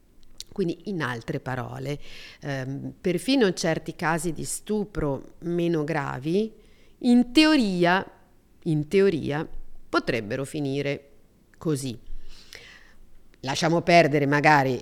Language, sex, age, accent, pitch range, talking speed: Italian, female, 40-59, native, 140-185 Hz, 95 wpm